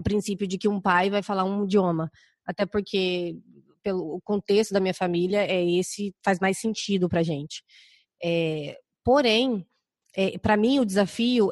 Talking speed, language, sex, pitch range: 160 wpm, Portuguese, female, 185-215 Hz